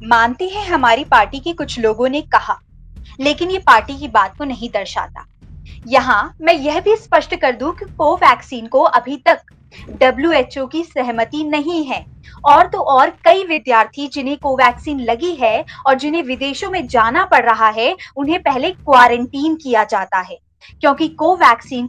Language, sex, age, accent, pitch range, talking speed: Hindi, female, 20-39, native, 255-340 Hz, 165 wpm